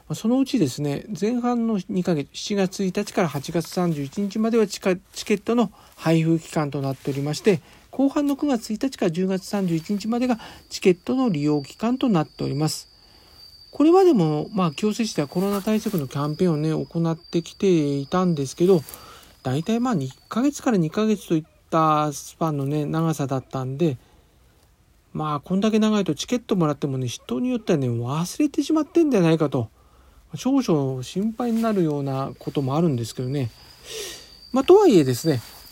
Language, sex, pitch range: Japanese, male, 140-220 Hz